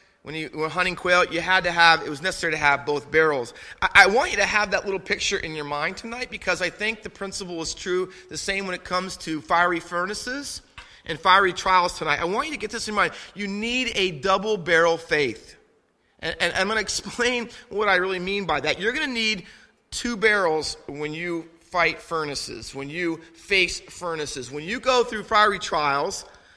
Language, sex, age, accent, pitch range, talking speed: English, male, 30-49, American, 165-205 Hz, 210 wpm